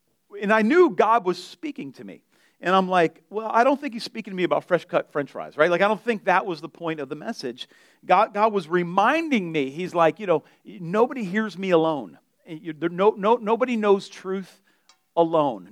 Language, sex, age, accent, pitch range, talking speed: English, male, 40-59, American, 170-230 Hz, 220 wpm